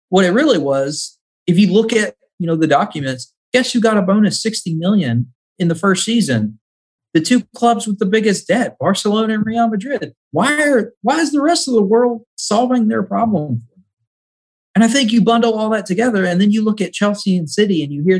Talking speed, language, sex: 215 wpm, English, male